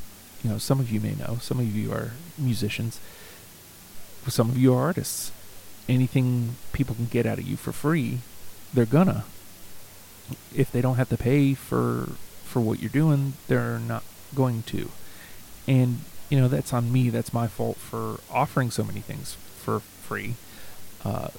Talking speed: 170 wpm